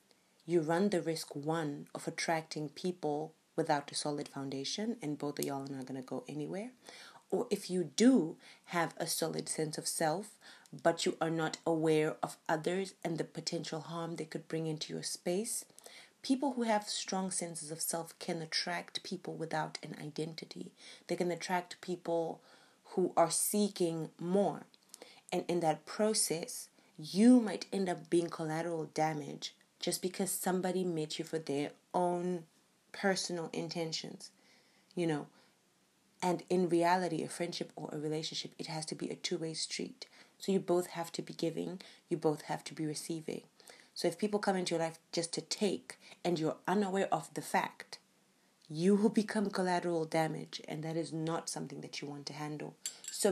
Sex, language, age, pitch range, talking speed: female, English, 30-49, 160-185 Hz, 170 wpm